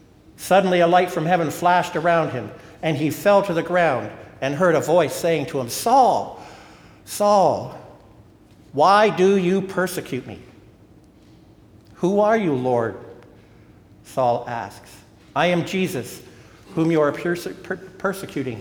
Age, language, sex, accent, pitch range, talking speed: 60-79, English, male, American, 115-175 Hz, 130 wpm